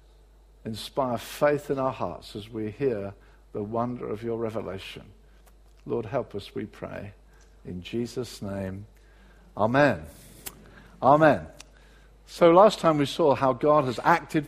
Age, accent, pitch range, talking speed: 50-69, British, 130-170 Hz, 135 wpm